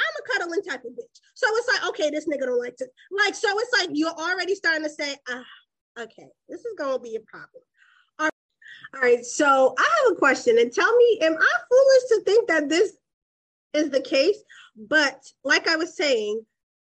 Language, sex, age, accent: English, female, 20-39, American